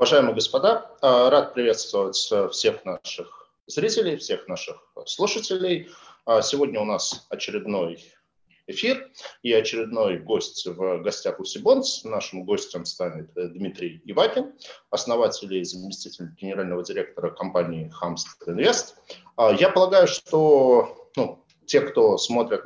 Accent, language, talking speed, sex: native, Russian, 110 wpm, male